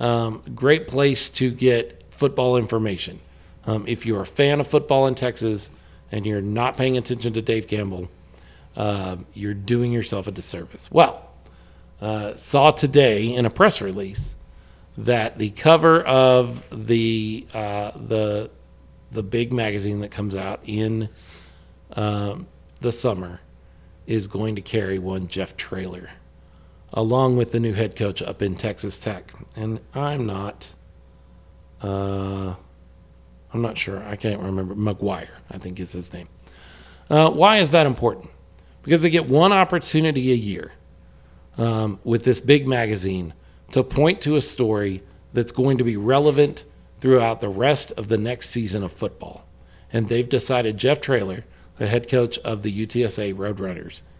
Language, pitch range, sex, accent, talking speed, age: English, 90-120 Hz, male, American, 150 wpm, 40-59